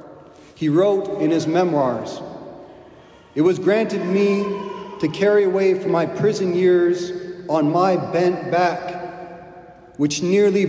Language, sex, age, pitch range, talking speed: English, male, 40-59, 170-195 Hz, 125 wpm